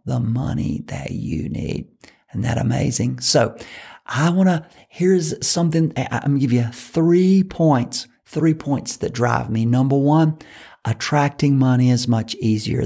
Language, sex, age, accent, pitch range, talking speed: English, male, 50-69, American, 115-140 Hz, 155 wpm